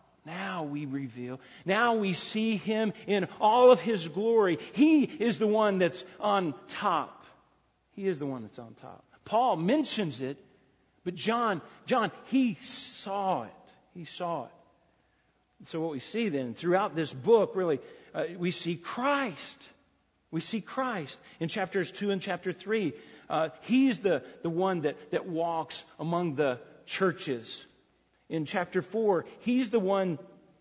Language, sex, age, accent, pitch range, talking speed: English, male, 40-59, American, 175-230 Hz, 150 wpm